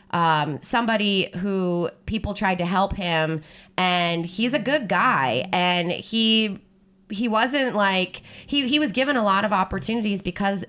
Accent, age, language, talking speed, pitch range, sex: American, 20-39, English, 150 wpm, 165-205 Hz, female